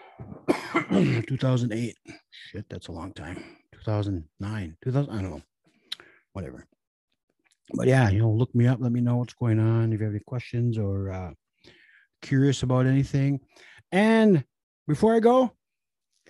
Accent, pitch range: American, 125-180 Hz